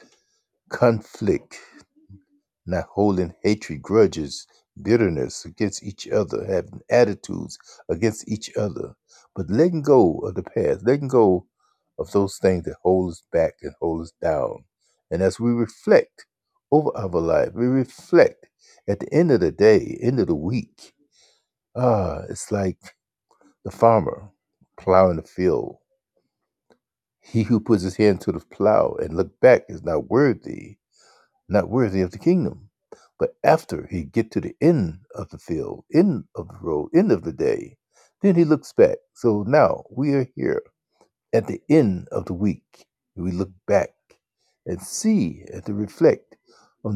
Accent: American